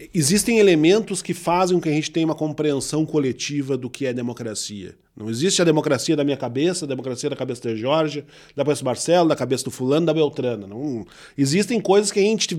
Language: Portuguese